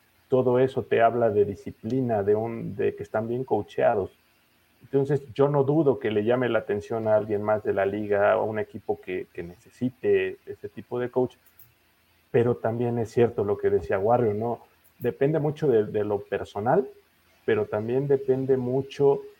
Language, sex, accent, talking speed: English, male, Mexican, 180 wpm